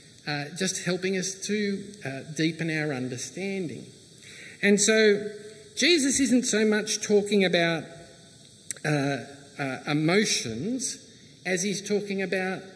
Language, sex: English, male